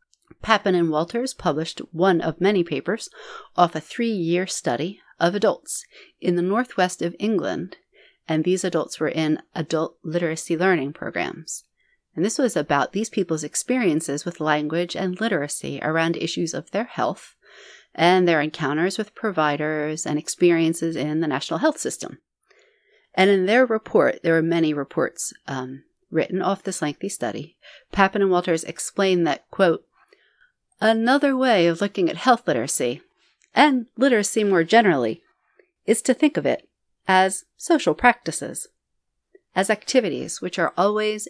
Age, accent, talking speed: 40-59, American, 145 wpm